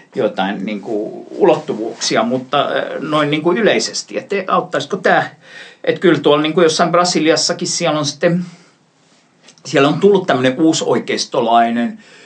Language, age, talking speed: Finnish, 50-69, 115 wpm